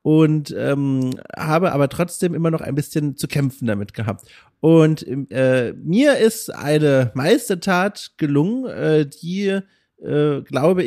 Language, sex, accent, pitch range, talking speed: German, male, German, 135-180 Hz, 135 wpm